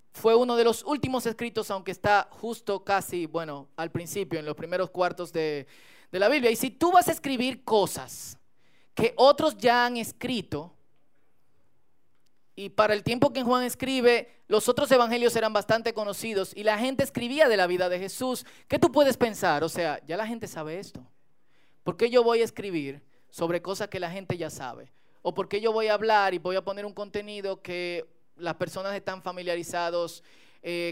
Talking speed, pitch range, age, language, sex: 190 wpm, 180-245 Hz, 30-49, Spanish, male